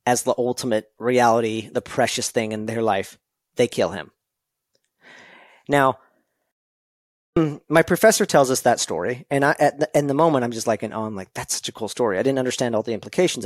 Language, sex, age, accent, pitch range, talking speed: English, male, 40-59, American, 120-180 Hz, 185 wpm